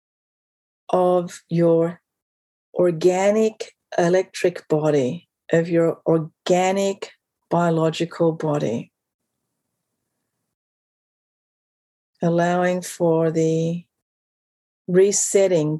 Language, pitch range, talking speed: English, 165-195 Hz, 55 wpm